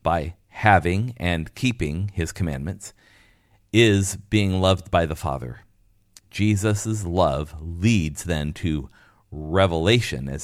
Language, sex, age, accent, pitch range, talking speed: English, male, 40-59, American, 85-110 Hz, 110 wpm